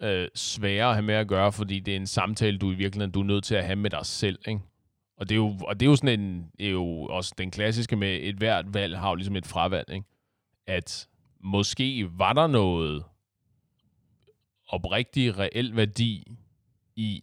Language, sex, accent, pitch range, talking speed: Danish, male, native, 90-110 Hz, 205 wpm